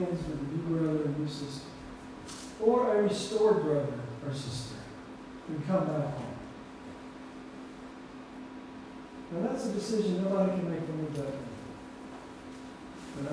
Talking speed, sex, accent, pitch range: 125 wpm, male, American, 145-205 Hz